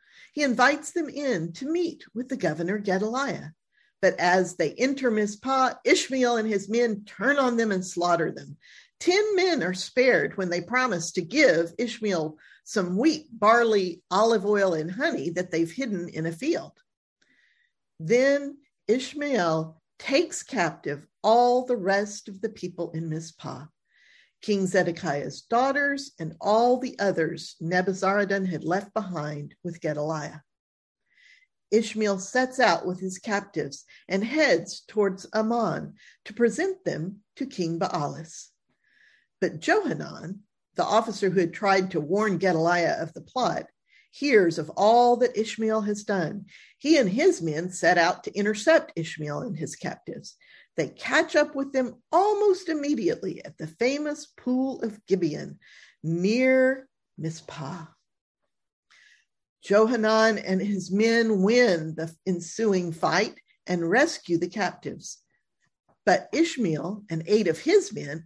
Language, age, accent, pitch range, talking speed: English, 50-69, American, 175-255 Hz, 135 wpm